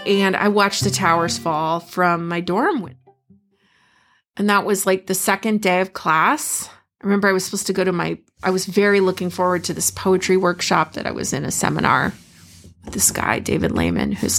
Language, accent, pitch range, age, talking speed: English, American, 180-210 Hz, 30-49, 200 wpm